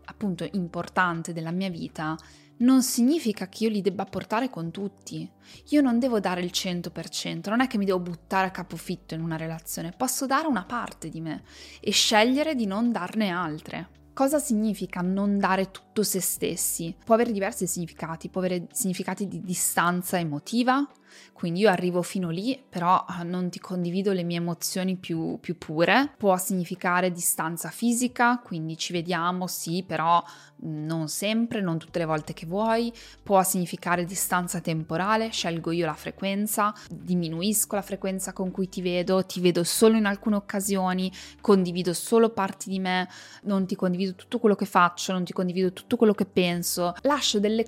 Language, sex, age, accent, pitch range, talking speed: Italian, female, 20-39, native, 175-210 Hz, 170 wpm